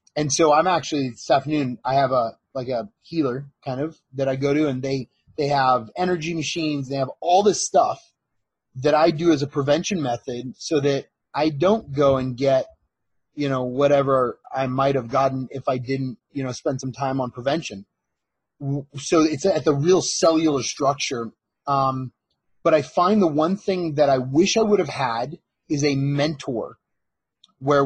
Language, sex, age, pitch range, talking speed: English, male, 30-49, 130-155 Hz, 185 wpm